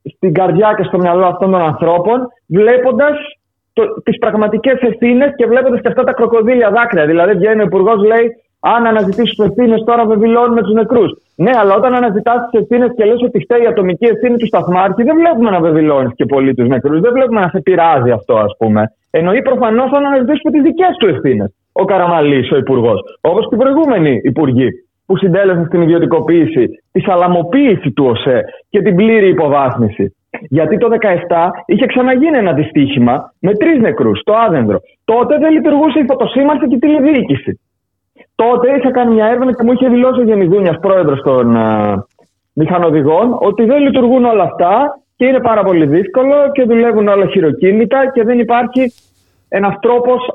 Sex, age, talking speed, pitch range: male, 30-49, 170 wpm, 180-255 Hz